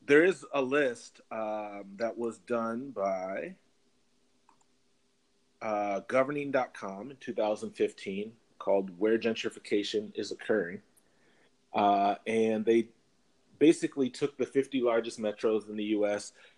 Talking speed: 110 wpm